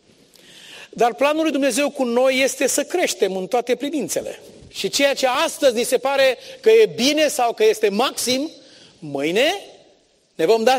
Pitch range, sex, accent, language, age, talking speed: 230-315 Hz, male, native, Romanian, 40-59, 165 wpm